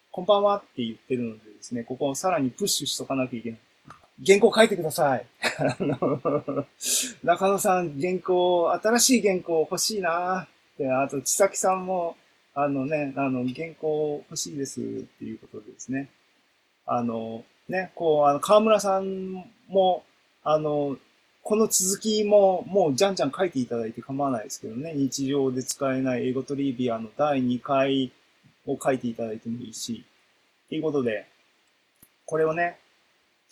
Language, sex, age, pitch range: Japanese, male, 20-39, 130-215 Hz